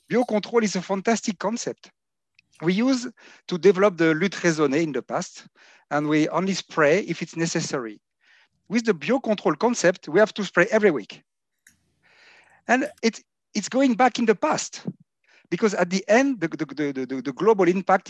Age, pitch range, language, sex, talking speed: 50-69, 155-210 Hz, English, male, 155 wpm